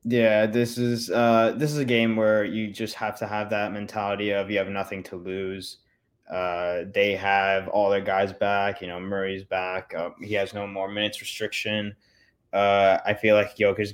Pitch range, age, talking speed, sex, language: 95-115 Hz, 20-39, 195 wpm, male, English